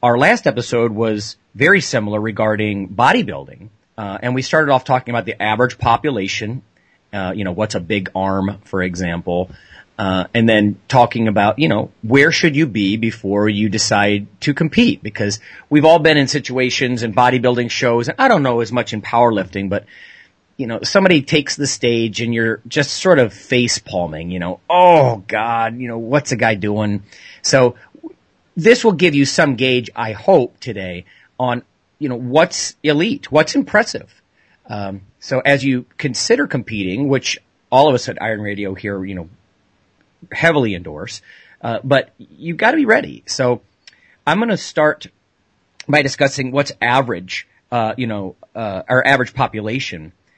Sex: male